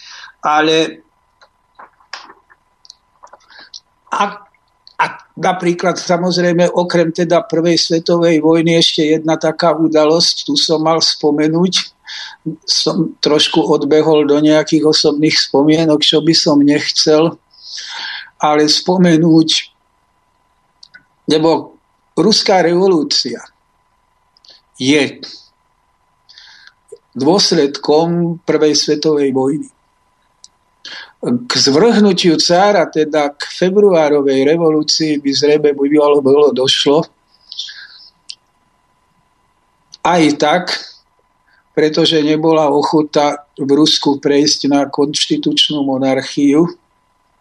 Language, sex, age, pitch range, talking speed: Slovak, male, 50-69, 145-165 Hz, 80 wpm